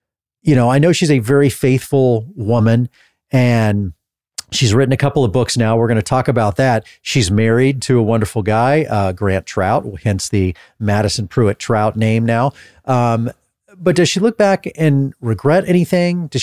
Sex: male